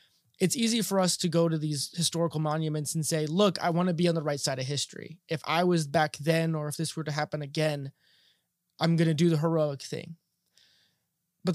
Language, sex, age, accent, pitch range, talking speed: English, male, 20-39, American, 155-185 Hz, 225 wpm